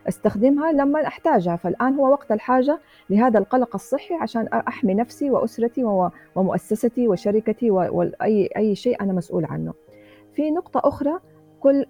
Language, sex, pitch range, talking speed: Arabic, female, 185-240 Hz, 135 wpm